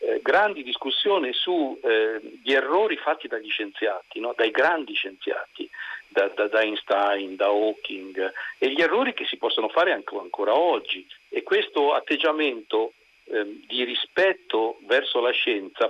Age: 50-69